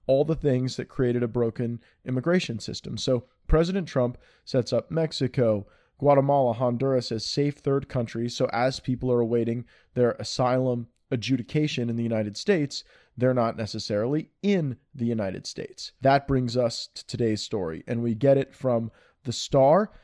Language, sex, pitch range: English, male, 120-140 Hz